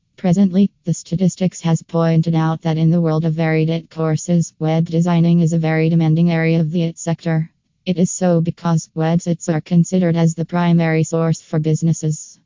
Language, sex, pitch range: English, female, 165-180 Hz